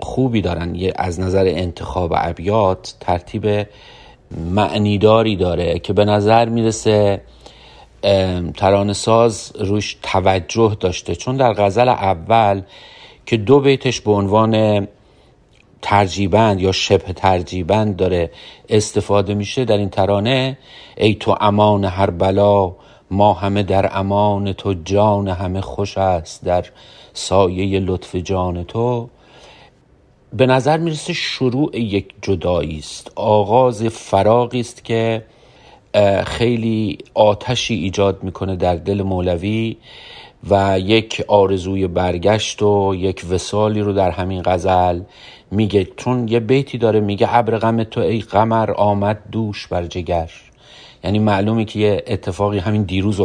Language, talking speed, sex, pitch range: Persian, 120 wpm, male, 95-110 Hz